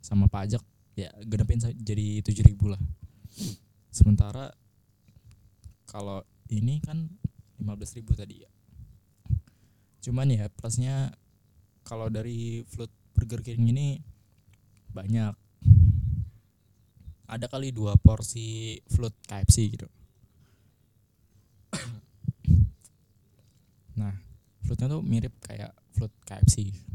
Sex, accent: male, native